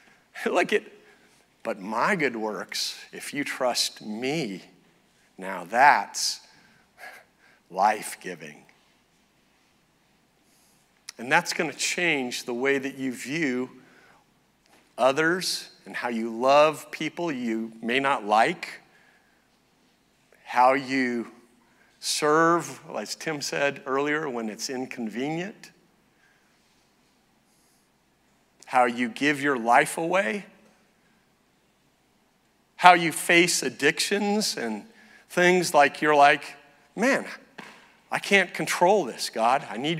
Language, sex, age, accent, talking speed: English, male, 50-69, American, 100 wpm